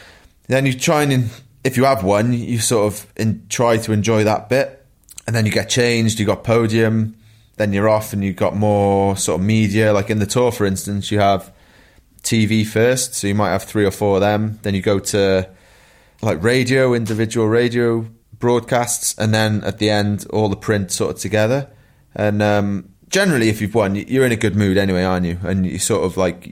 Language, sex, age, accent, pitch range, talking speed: English, male, 20-39, British, 95-115 Hz, 215 wpm